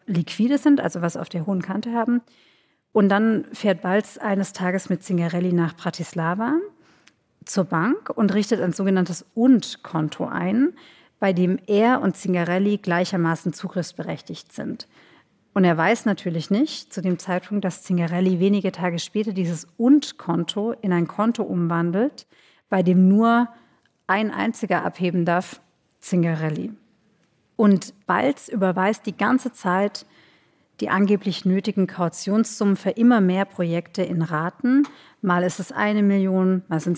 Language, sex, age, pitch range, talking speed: German, female, 40-59, 180-220 Hz, 140 wpm